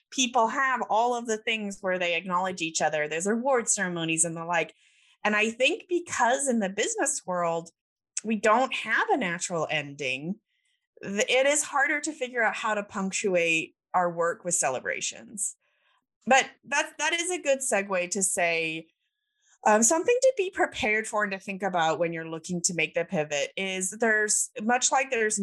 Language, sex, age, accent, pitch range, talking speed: English, female, 20-39, American, 165-235 Hz, 175 wpm